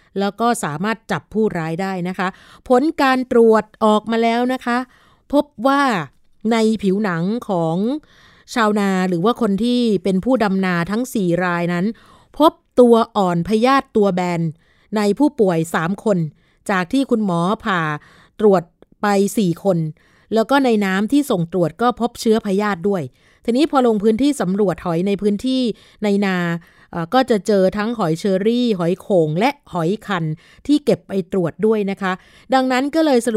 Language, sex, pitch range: Thai, female, 185-235 Hz